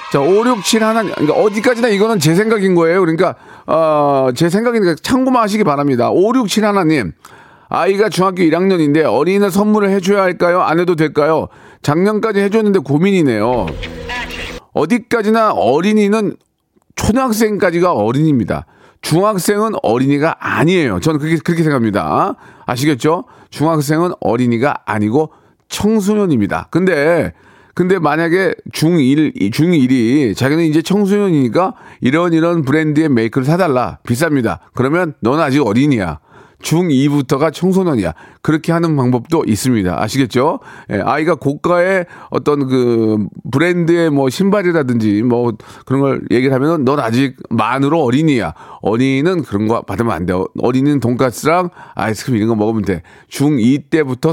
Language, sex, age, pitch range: Korean, male, 40-59, 130-185 Hz